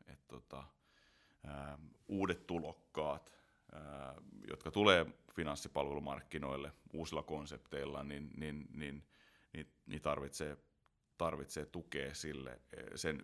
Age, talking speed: 30-49, 90 wpm